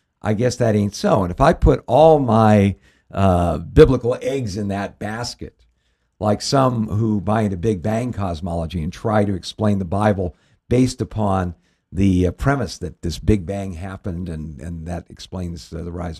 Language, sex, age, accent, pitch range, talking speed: English, male, 60-79, American, 90-120 Hz, 180 wpm